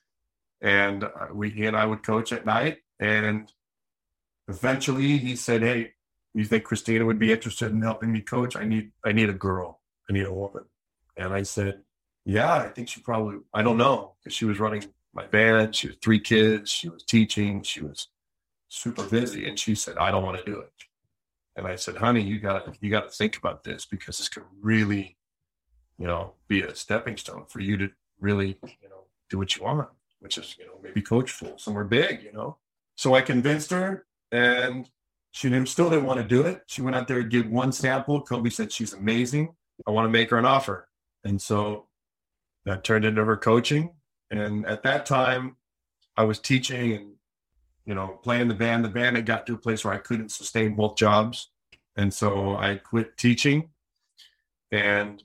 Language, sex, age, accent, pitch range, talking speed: English, male, 40-59, American, 100-120 Hz, 200 wpm